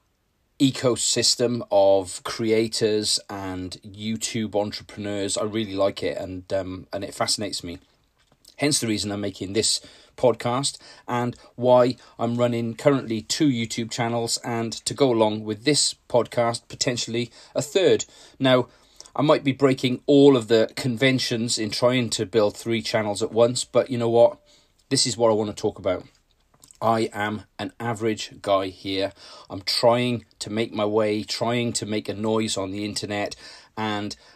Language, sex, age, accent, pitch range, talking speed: English, male, 30-49, British, 105-125 Hz, 160 wpm